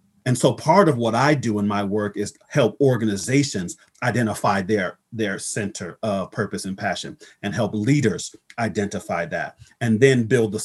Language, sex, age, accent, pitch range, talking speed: English, male, 40-59, American, 105-135 Hz, 170 wpm